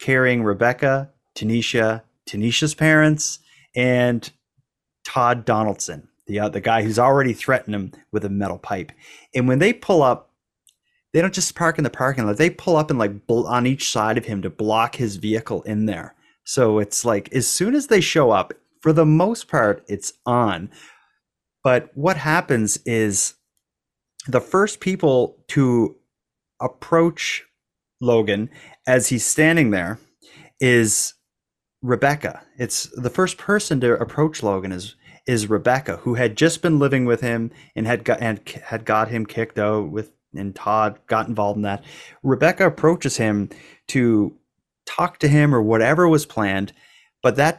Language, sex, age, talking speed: English, male, 30-49, 160 wpm